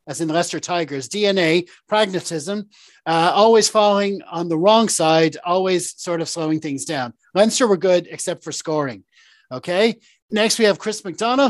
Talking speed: 160 wpm